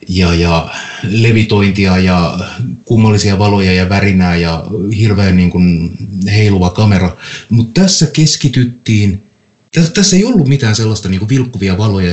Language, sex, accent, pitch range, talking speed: Finnish, male, native, 105-160 Hz, 130 wpm